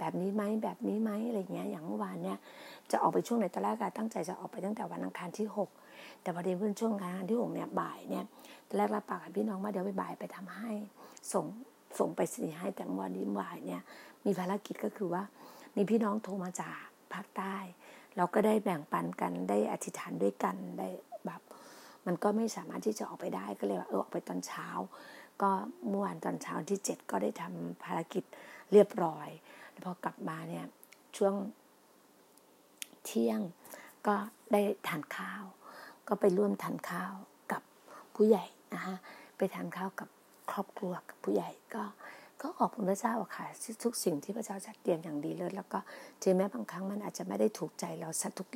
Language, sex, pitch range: Thai, female, 180-215 Hz